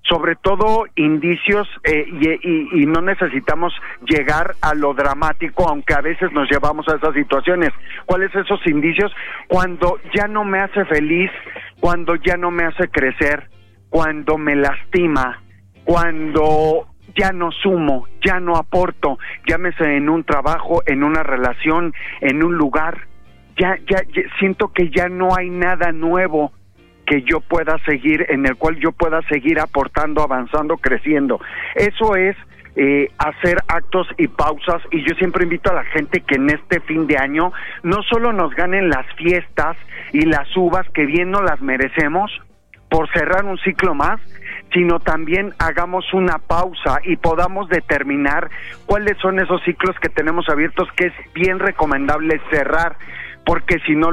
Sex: male